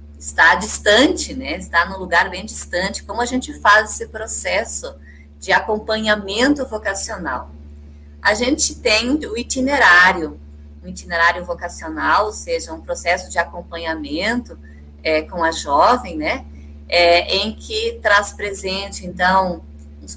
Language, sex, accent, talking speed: Portuguese, female, Brazilian, 120 wpm